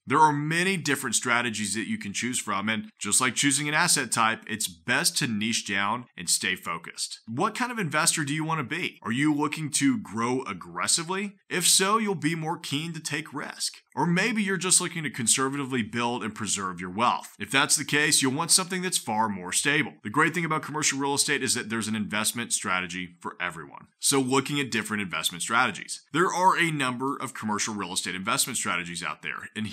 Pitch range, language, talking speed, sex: 110-155 Hz, English, 215 wpm, male